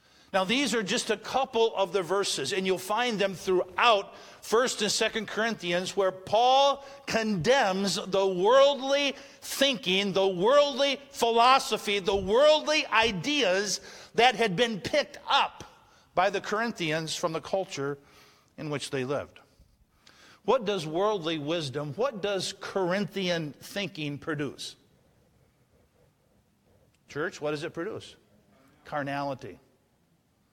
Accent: American